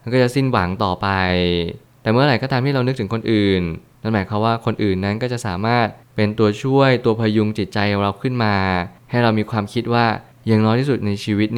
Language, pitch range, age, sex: Thai, 100-120 Hz, 20-39, male